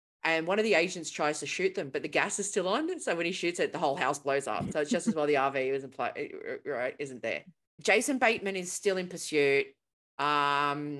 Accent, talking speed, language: Australian, 230 wpm, English